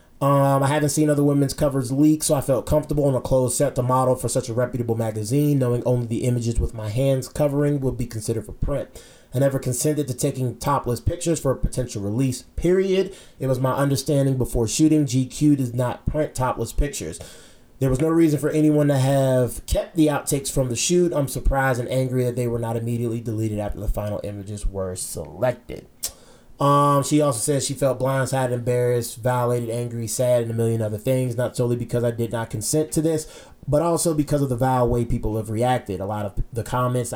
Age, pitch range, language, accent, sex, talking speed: 20-39, 120-145 Hz, English, American, male, 210 wpm